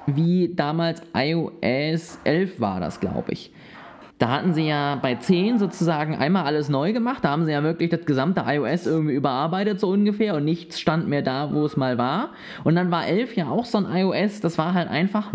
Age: 20-39